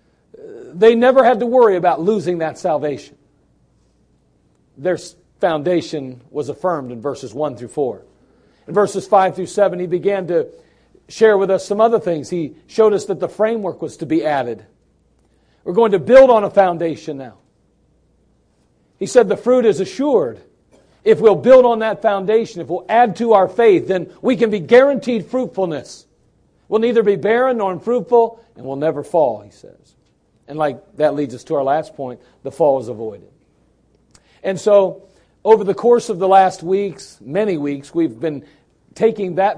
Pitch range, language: 155-220 Hz, English